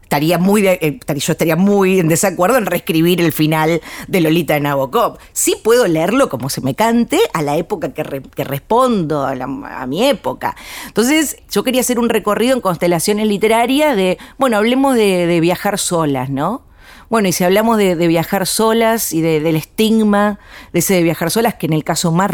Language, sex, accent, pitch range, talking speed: Spanish, female, Argentinian, 160-220 Hz, 190 wpm